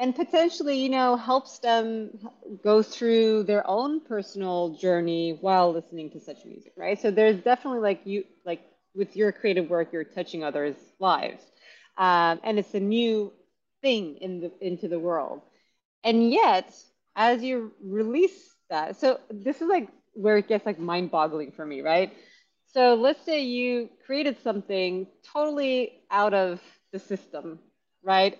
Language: English